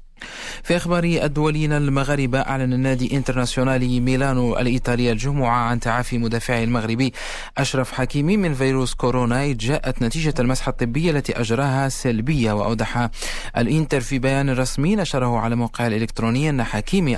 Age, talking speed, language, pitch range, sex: 30-49, 130 wpm, Arabic, 115-140 Hz, male